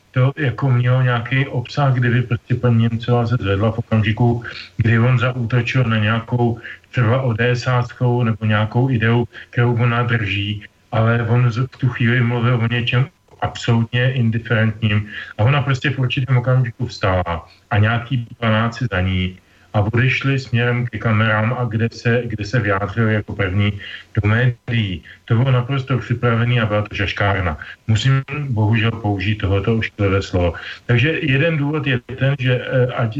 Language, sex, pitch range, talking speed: Slovak, male, 110-125 Hz, 150 wpm